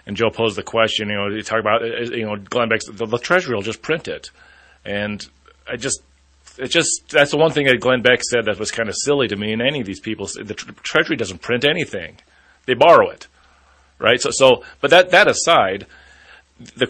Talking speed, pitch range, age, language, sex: 225 wpm, 105-125 Hz, 30-49, English, male